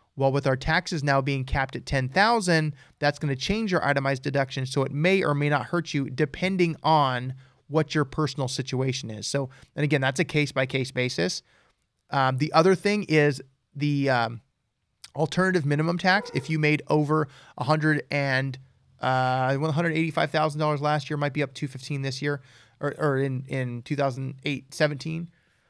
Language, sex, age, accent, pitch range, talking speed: English, male, 30-49, American, 135-155 Hz, 185 wpm